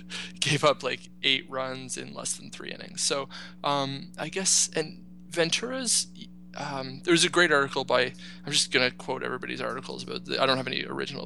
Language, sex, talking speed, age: English, male, 185 wpm, 20-39